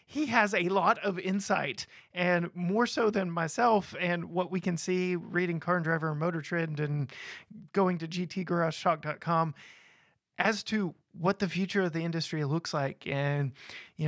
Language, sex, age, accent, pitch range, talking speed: English, male, 30-49, American, 160-195 Hz, 165 wpm